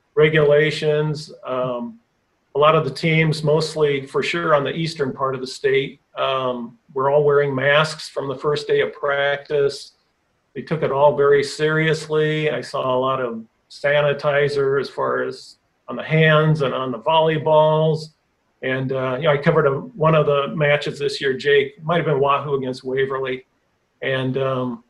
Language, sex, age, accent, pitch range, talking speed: English, male, 40-59, American, 135-160 Hz, 170 wpm